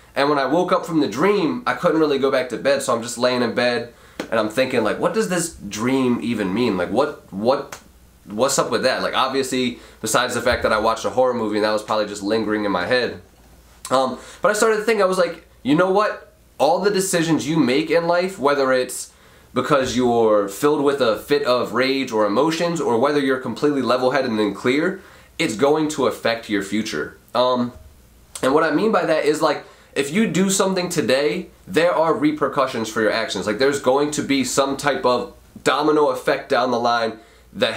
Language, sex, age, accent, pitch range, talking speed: English, male, 20-39, American, 115-150 Hz, 215 wpm